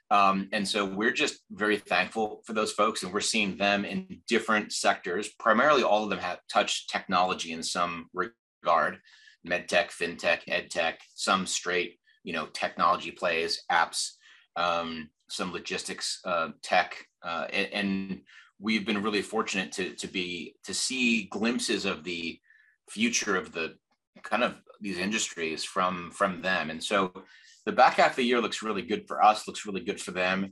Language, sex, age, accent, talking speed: English, male, 30-49, American, 165 wpm